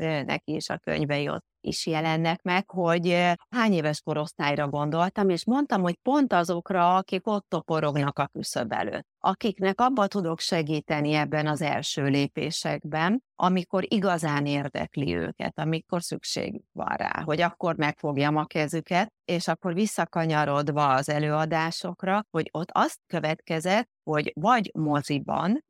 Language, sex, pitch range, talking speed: Hungarian, female, 150-190 Hz, 130 wpm